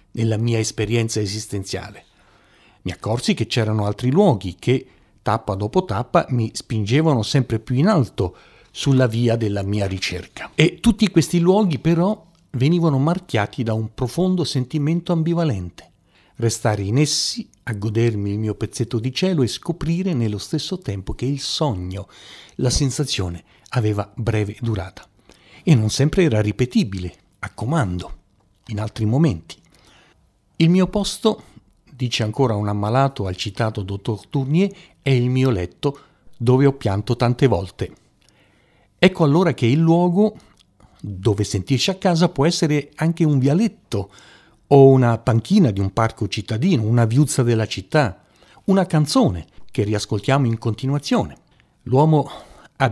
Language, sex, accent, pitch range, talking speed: Italian, male, native, 105-150 Hz, 140 wpm